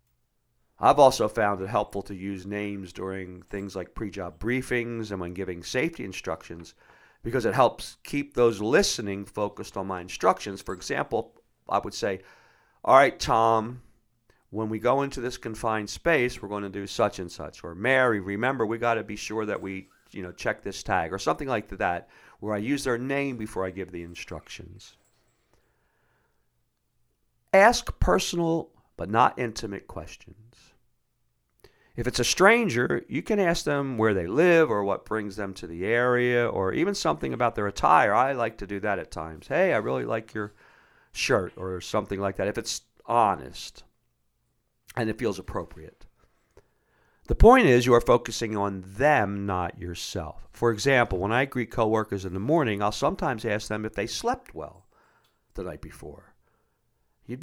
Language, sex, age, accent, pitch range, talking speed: English, male, 50-69, American, 100-120 Hz, 170 wpm